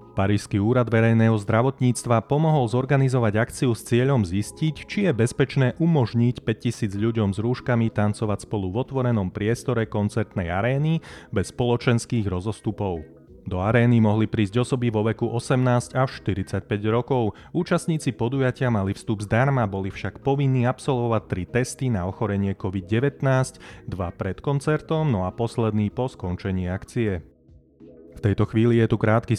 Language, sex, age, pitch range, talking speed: Slovak, male, 30-49, 100-125 Hz, 140 wpm